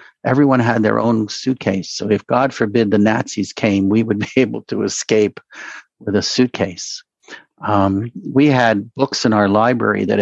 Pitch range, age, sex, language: 100-125 Hz, 60-79, male, English